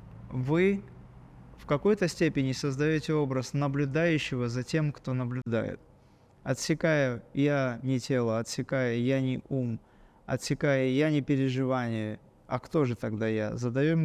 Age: 20-39